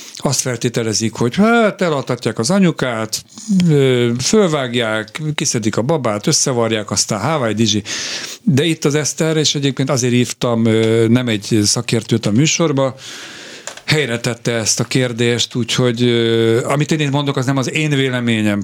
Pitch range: 105-135 Hz